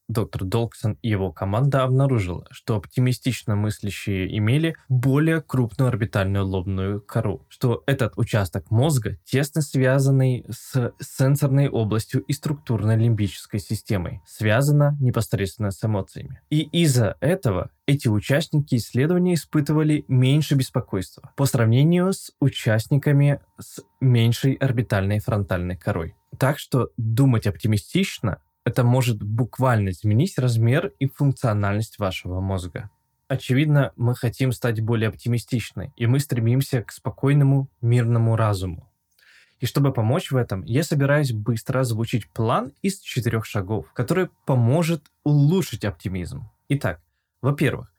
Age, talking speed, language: 20-39, 120 wpm, Russian